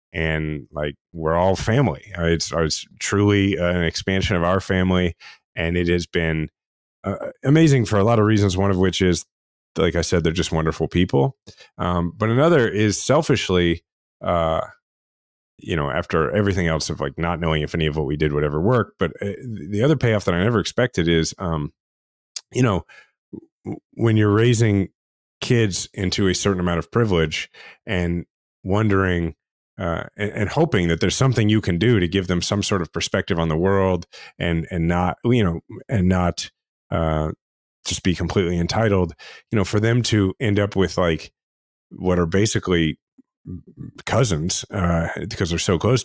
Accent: American